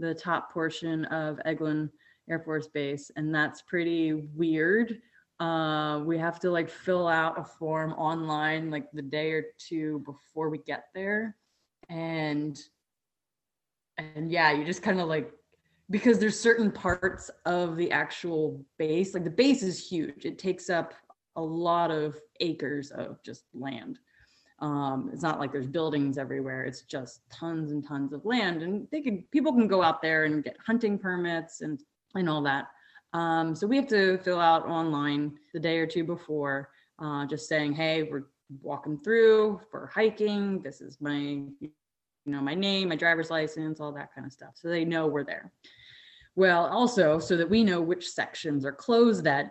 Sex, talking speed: female, 175 wpm